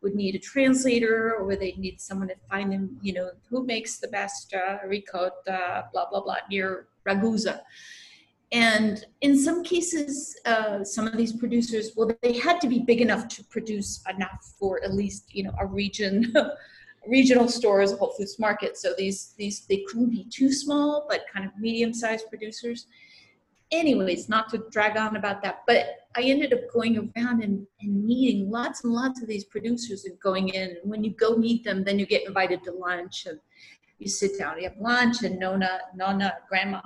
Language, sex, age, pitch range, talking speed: English, female, 40-59, 195-245 Hz, 195 wpm